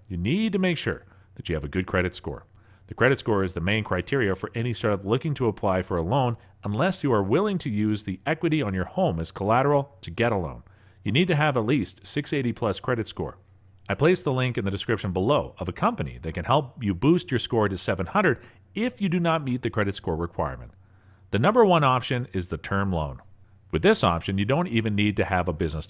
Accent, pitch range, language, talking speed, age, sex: American, 95-135 Hz, English, 240 wpm, 40-59, male